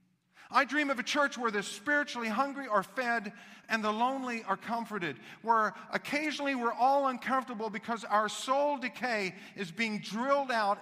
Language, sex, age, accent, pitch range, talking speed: English, male, 50-69, American, 180-245 Hz, 160 wpm